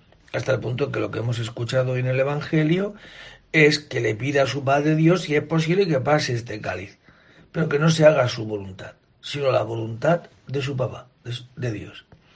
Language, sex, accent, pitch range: Spanish, male, Spanish, 120-150 Hz